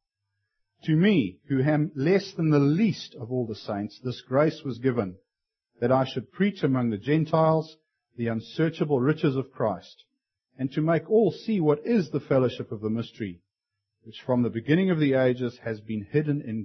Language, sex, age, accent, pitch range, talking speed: English, male, 50-69, Australian, 105-145 Hz, 185 wpm